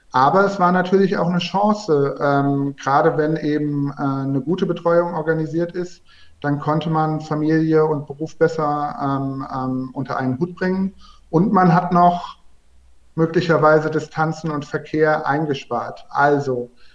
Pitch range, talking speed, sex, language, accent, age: 145-175 Hz, 140 wpm, male, German, German, 50-69